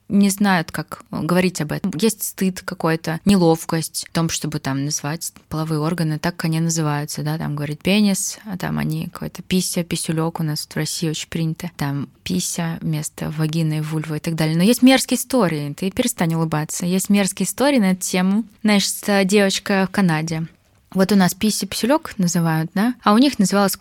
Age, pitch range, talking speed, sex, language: 20-39, 165-205 Hz, 185 wpm, female, Russian